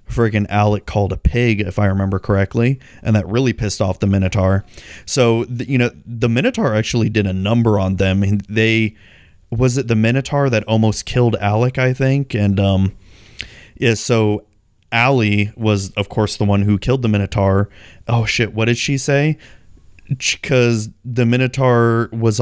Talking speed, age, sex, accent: 170 wpm, 30-49, male, American